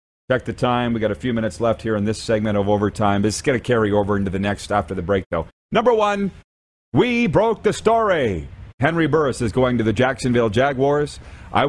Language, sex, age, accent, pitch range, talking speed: English, male, 40-59, American, 105-140 Hz, 220 wpm